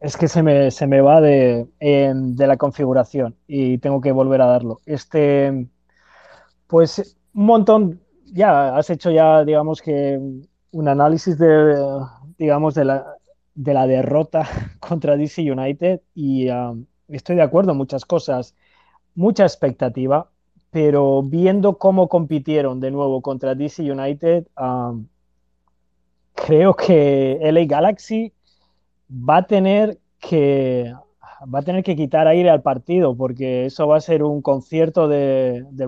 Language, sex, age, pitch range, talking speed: Spanish, male, 20-39, 130-160 Hz, 140 wpm